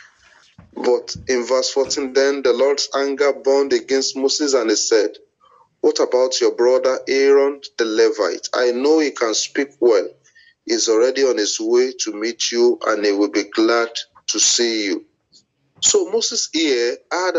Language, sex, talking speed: English, male, 160 wpm